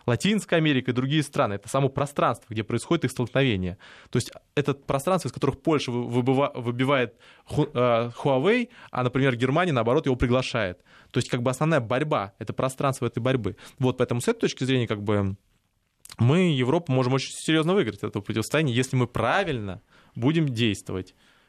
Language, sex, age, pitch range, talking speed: Russian, male, 20-39, 110-140 Hz, 160 wpm